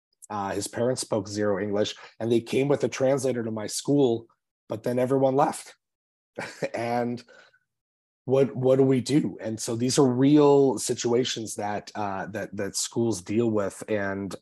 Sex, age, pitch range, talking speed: male, 30-49, 105-125 Hz, 160 wpm